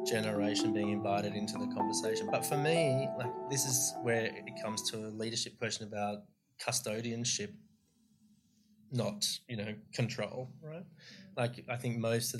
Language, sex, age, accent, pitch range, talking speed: English, male, 20-39, Australian, 105-130 Hz, 150 wpm